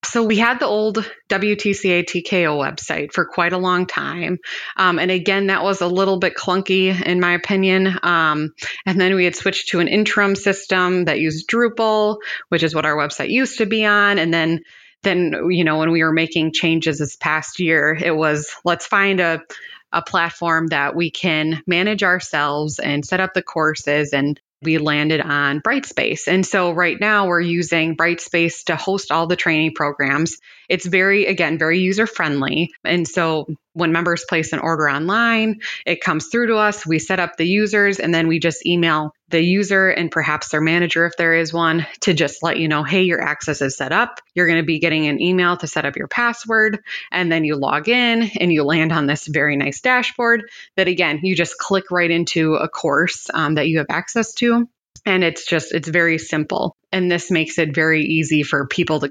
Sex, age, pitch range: female, 20-39, 160-190 Hz